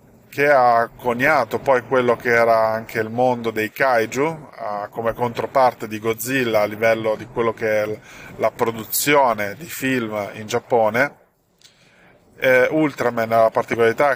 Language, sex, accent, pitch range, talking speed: Italian, male, native, 115-130 Hz, 135 wpm